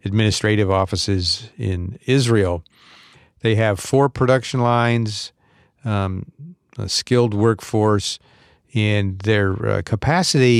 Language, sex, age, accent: English, male, 50-69, American